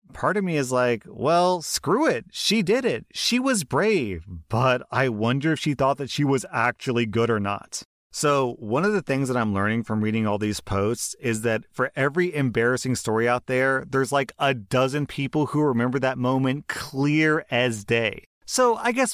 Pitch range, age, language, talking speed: 105-150 Hz, 30-49, English, 200 wpm